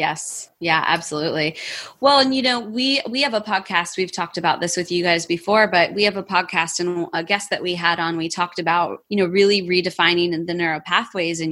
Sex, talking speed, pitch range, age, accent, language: female, 220 wpm, 170-210 Hz, 20-39, American, English